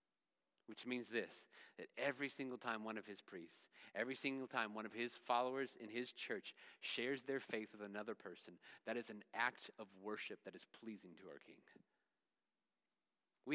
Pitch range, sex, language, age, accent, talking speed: 115-140 Hz, male, English, 40-59, American, 175 wpm